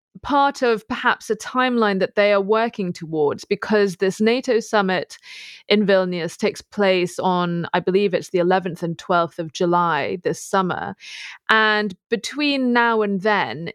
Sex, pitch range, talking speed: female, 185-220 Hz, 155 wpm